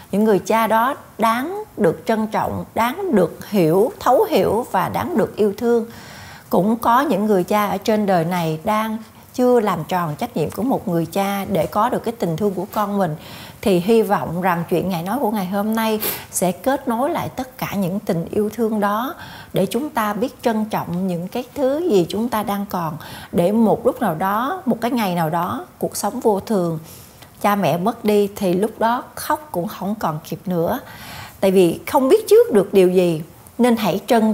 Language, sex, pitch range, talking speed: Vietnamese, female, 180-230 Hz, 210 wpm